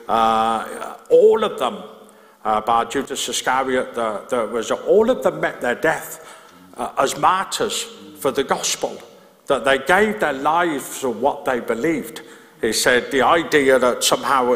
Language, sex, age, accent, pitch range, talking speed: English, male, 50-69, British, 130-215 Hz, 155 wpm